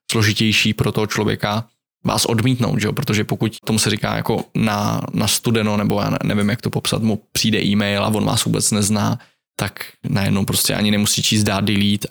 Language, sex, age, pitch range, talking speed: Czech, male, 20-39, 105-115 Hz, 195 wpm